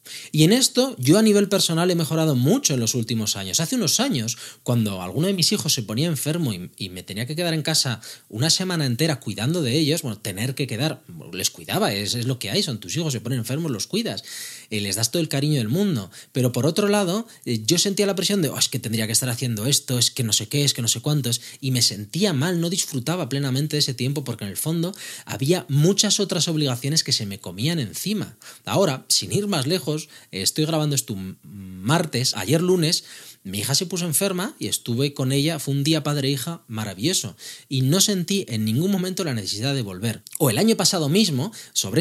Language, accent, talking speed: Spanish, Spanish, 225 wpm